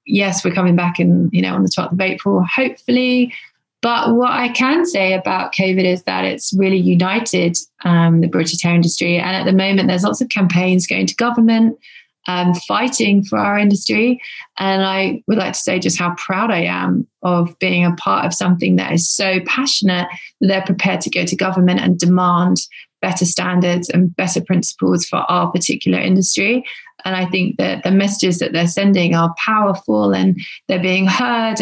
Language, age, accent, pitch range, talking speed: English, 20-39, British, 175-200 Hz, 190 wpm